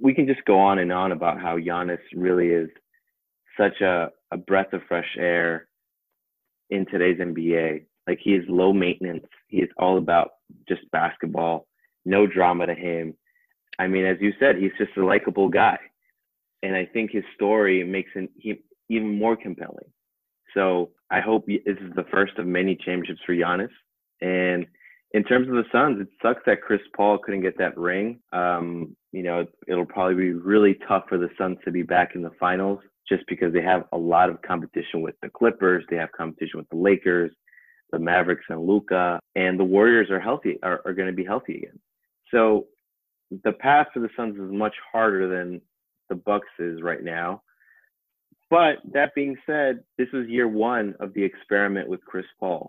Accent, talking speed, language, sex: American, 185 wpm, English, male